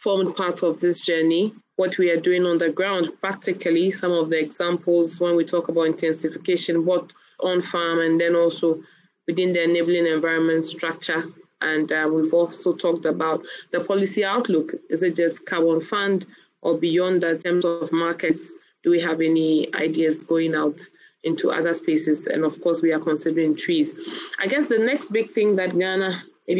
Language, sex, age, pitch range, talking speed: English, female, 20-39, 165-200 Hz, 180 wpm